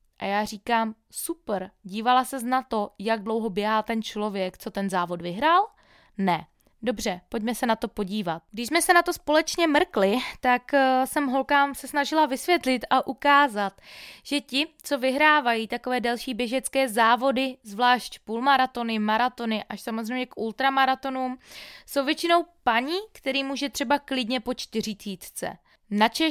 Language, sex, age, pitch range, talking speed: Czech, female, 20-39, 205-260 Hz, 145 wpm